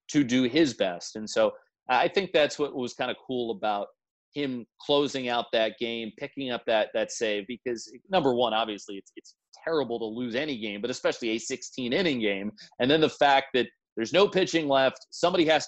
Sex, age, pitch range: male, 30-49, 110-145 Hz